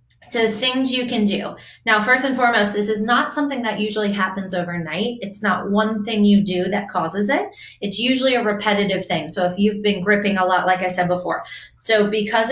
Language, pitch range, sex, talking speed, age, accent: English, 190-240 Hz, female, 210 wpm, 20-39, American